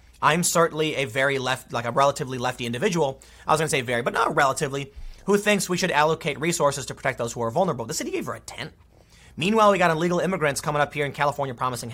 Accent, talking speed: American, 240 wpm